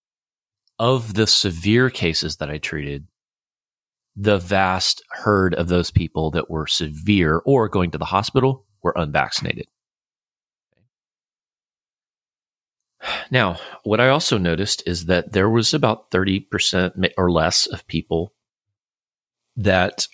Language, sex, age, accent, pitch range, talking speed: English, male, 30-49, American, 85-105 Hz, 115 wpm